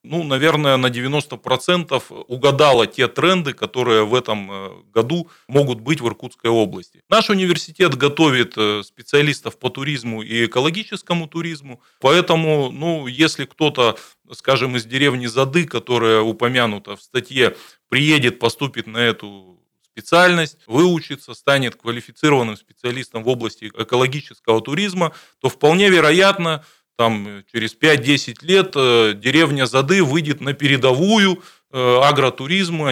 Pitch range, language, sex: 115-160 Hz, Russian, male